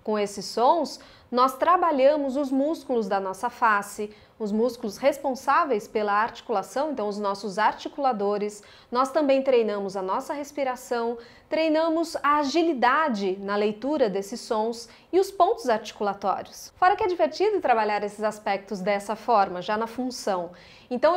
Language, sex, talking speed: Portuguese, female, 140 wpm